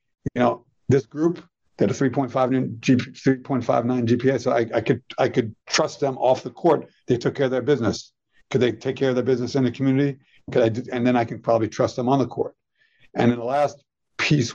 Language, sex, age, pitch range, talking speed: English, male, 50-69, 120-135 Hz, 230 wpm